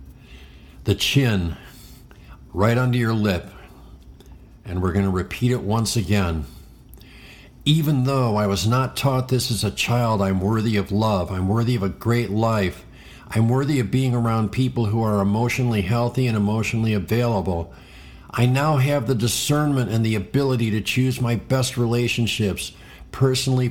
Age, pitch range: 50-69, 100-125 Hz